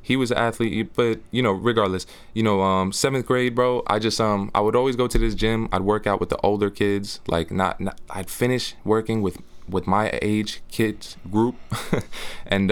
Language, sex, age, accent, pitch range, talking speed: English, male, 20-39, American, 85-105 Hz, 210 wpm